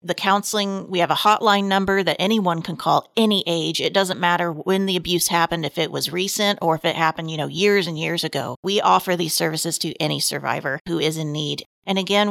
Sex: female